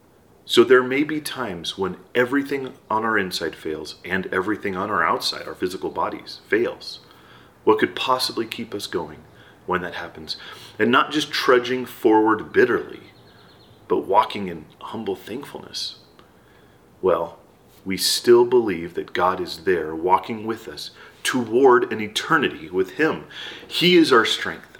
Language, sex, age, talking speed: English, male, 40-59, 145 wpm